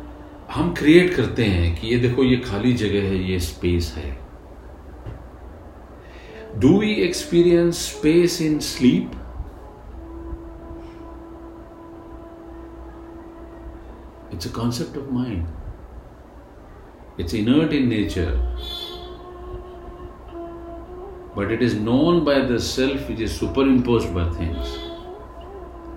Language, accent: Hindi, native